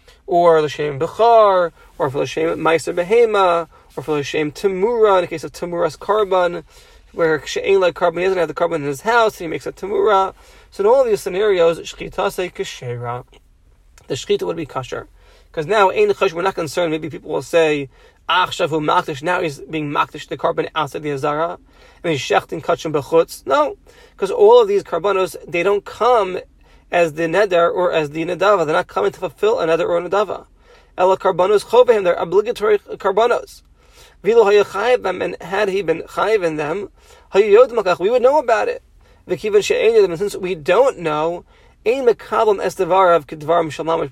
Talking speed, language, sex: 190 wpm, English, male